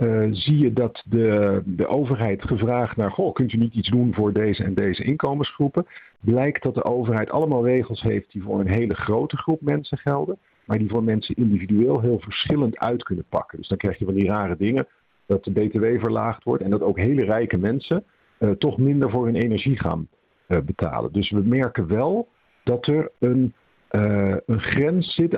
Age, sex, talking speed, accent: 50-69, male, 195 wpm, Dutch